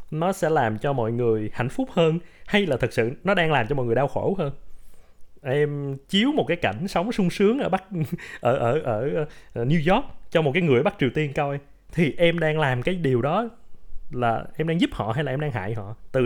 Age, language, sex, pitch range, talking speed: 20-39, Vietnamese, male, 110-165 Hz, 240 wpm